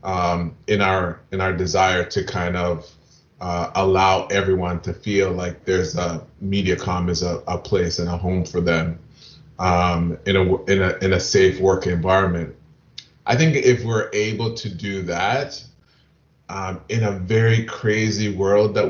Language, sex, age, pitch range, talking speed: English, male, 30-49, 95-110 Hz, 165 wpm